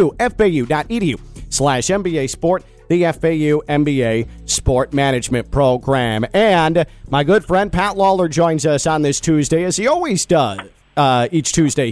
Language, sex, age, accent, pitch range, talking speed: English, male, 40-59, American, 150-205 Hz, 130 wpm